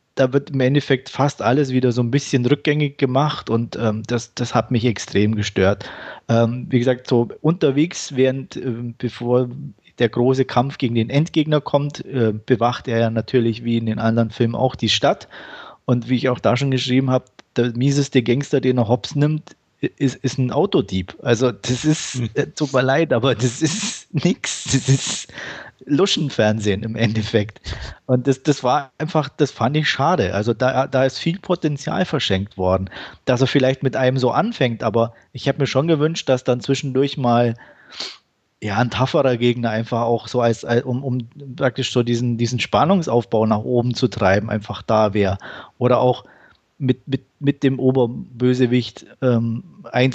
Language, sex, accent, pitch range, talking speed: German, male, German, 115-135 Hz, 180 wpm